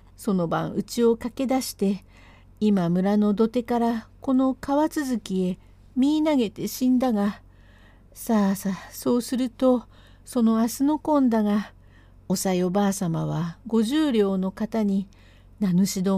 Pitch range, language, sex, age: 190-255 Hz, Japanese, female, 50-69